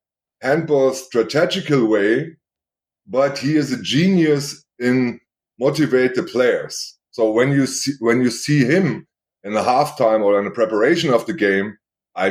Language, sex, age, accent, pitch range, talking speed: English, male, 30-49, German, 110-135 Hz, 150 wpm